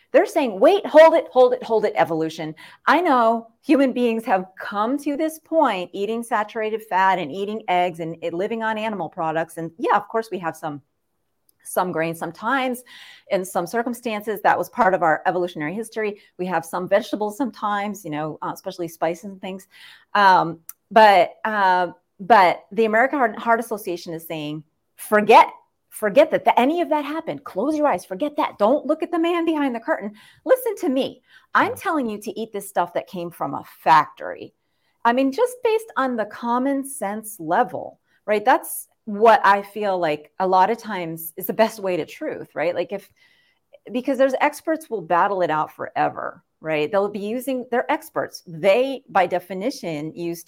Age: 30-49